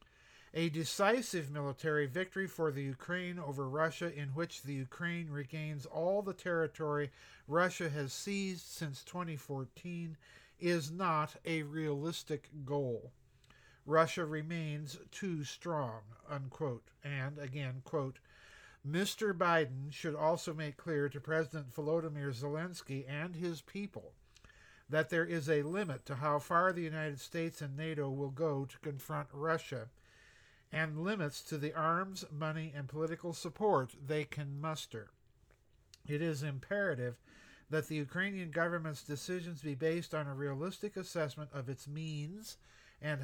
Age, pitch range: 50-69, 140-165 Hz